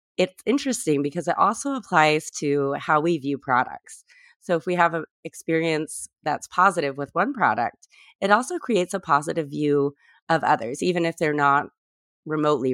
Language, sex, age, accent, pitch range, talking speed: English, female, 30-49, American, 145-170 Hz, 165 wpm